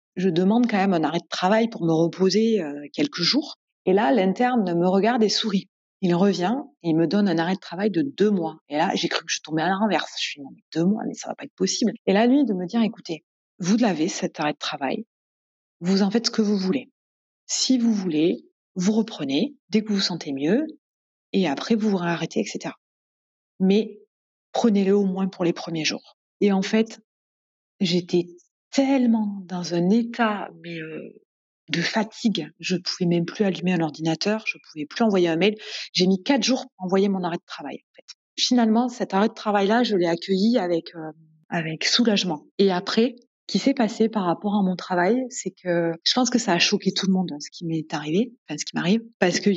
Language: French